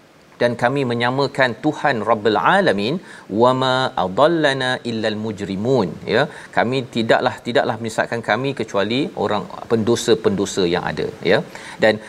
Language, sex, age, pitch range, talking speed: Malayalam, male, 40-59, 115-145 Hz, 115 wpm